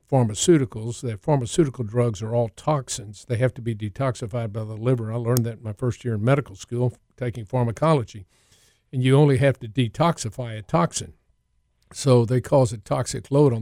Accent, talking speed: American, 185 wpm